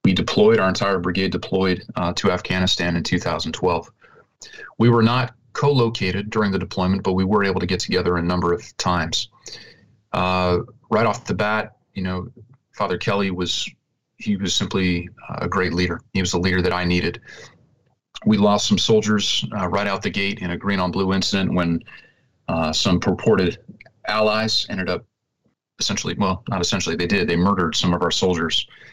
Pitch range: 90-105 Hz